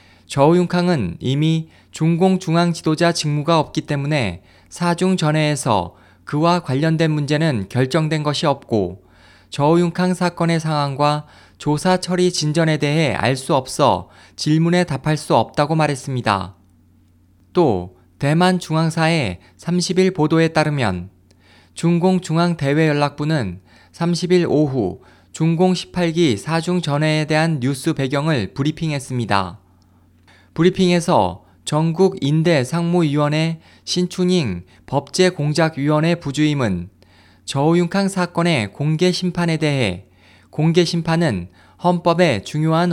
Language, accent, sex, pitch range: Korean, native, male, 100-170 Hz